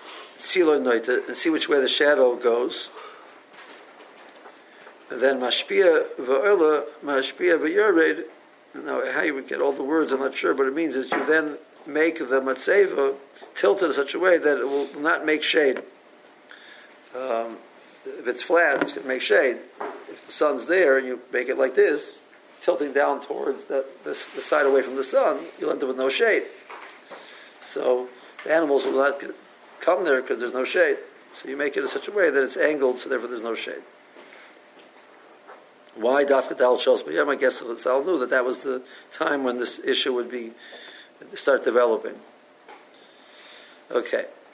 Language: English